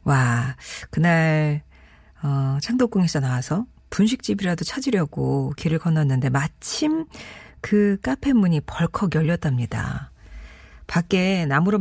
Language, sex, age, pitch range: Korean, female, 40-59, 145-210 Hz